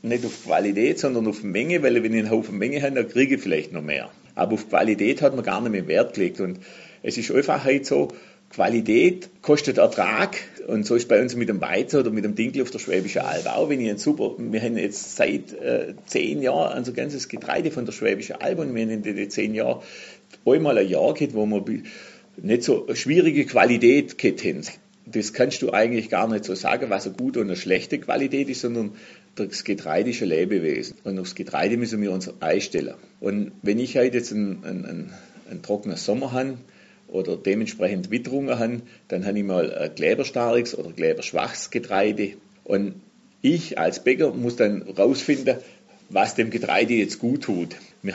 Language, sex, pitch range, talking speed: German, male, 105-130 Hz, 200 wpm